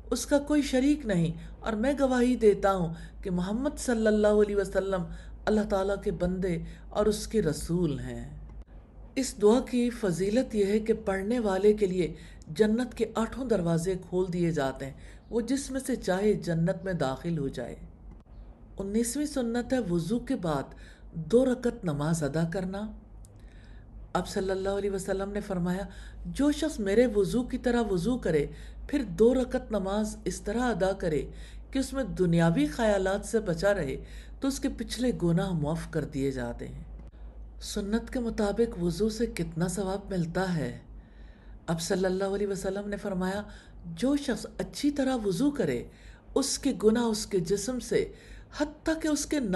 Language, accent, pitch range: English, Indian, 170-235 Hz